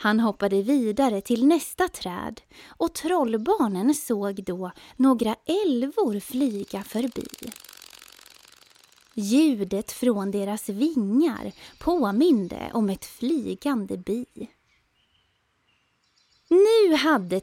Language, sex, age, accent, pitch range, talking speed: Swedish, female, 20-39, native, 205-300 Hz, 85 wpm